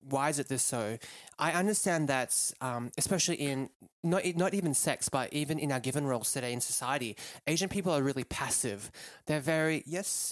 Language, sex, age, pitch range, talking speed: English, male, 20-39, 130-160 Hz, 185 wpm